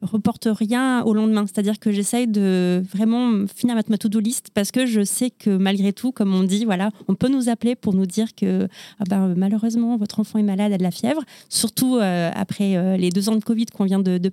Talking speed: 240 wpm